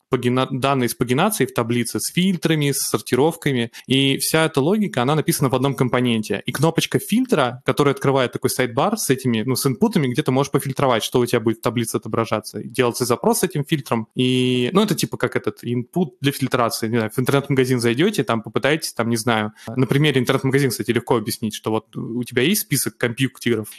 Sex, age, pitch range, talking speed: male, 20-39, 120-150 Hz, 195 wpm